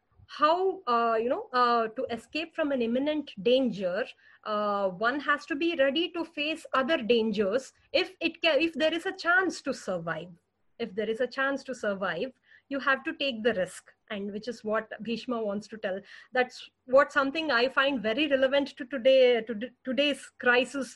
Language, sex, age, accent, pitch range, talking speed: English, female, 30-49, Indian, 230-275 Hz, 185 wpm